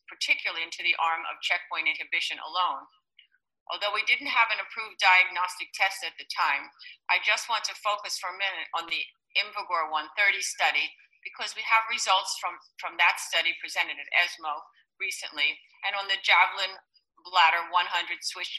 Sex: female